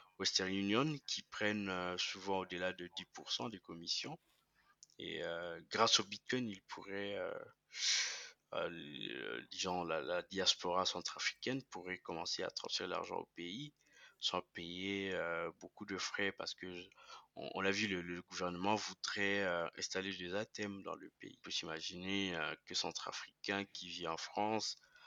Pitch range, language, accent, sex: 90-100 Hz, French, French, male